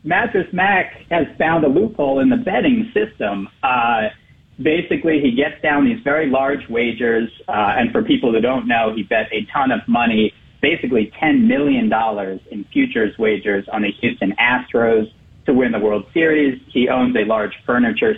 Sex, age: male, 40-59